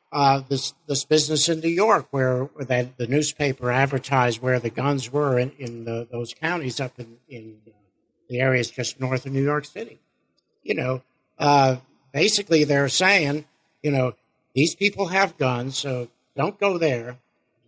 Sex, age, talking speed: male, 60-79, 170 wpm